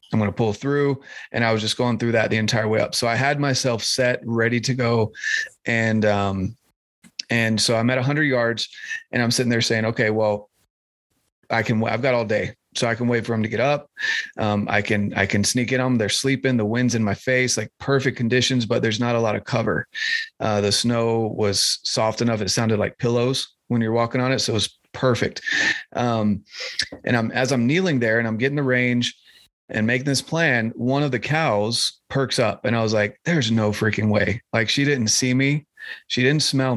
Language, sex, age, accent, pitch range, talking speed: English, male, 30-49, American, 110-135 Hz, 225 wpm